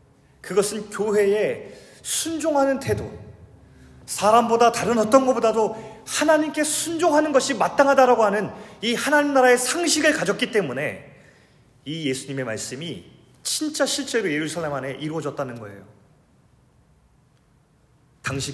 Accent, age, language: native, 30-49, Korean